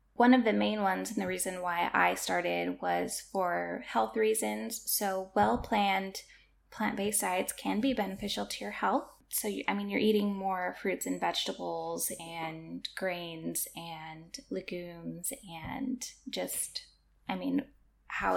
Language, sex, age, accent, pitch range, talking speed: English, female, 10-29, American, 180-225 Hz, 140 wpm